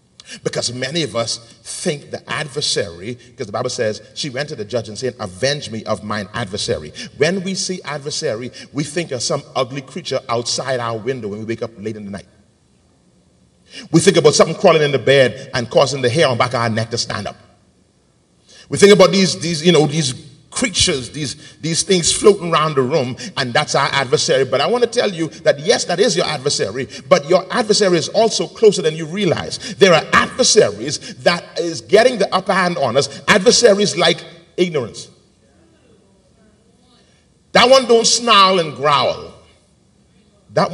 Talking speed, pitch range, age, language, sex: 185 wpm, 115-180 Hz, 40-59, English, male